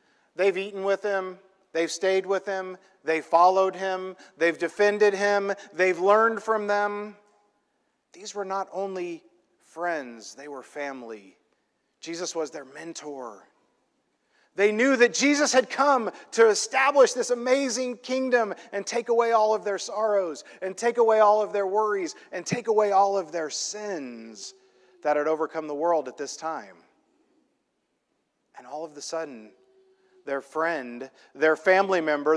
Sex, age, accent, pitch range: male, 40-59, American, 165-225 Hz